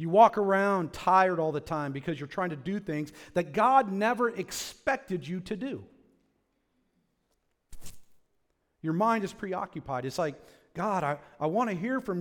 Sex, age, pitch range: male, 40-59, 135-185 Hz